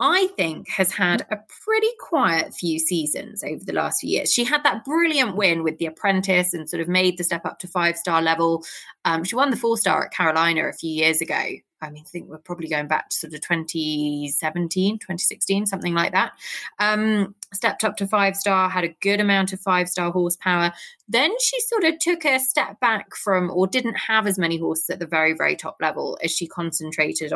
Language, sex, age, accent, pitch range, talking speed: English, female, 20-39, British, 165-210 Hz, 210 wpm